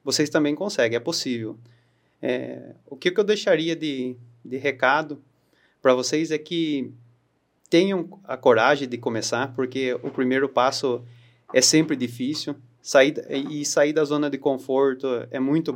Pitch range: 130-155 Hz